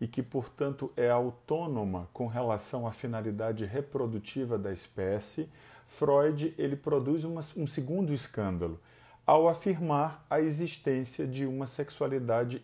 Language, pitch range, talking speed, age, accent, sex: Portuguese, 120-165 Hz, 120 wpm, 40-59, Brazilian, male